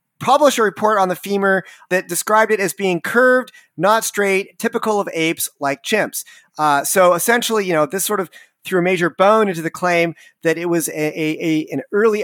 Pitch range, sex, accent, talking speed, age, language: 160-205 Hz, male, American, 205 wpm, 30-49, English